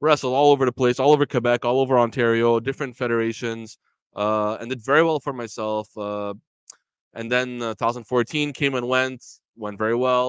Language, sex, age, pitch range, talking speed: French, male, 20-39, 115-140 Hz, 180 wpm